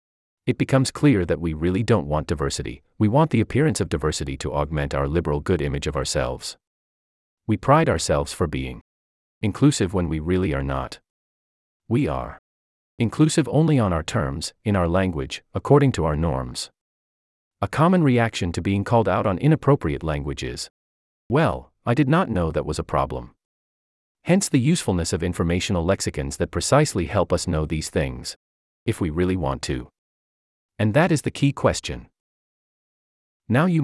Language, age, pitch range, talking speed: English, 40-59, 75-115 Hz, 165 wpm